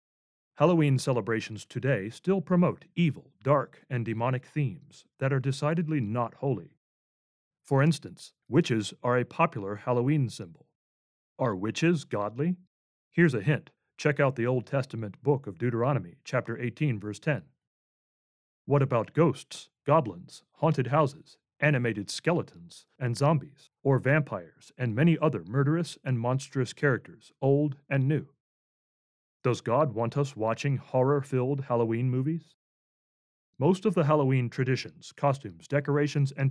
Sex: male